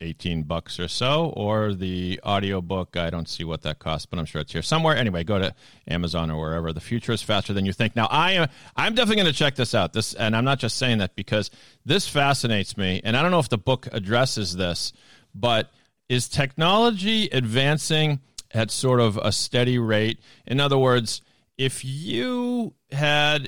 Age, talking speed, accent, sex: 40-59, 200 wpm, American, male